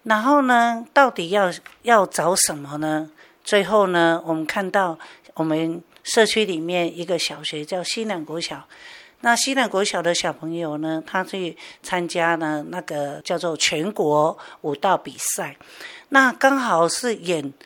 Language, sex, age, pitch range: Chinese, female, 50-69, 165-220 Hz